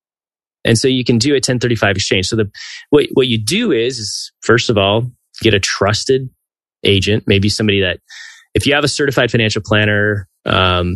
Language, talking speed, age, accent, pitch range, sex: English, 185 wpm, 20-39, American, 95-120 Hz, male